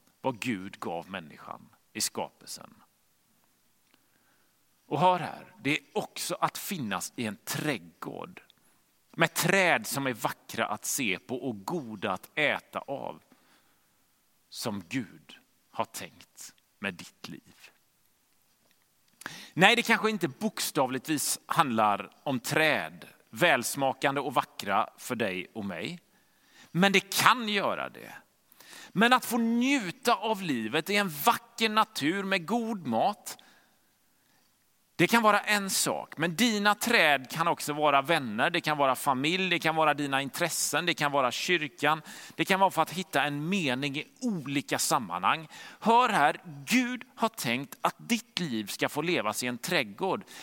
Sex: male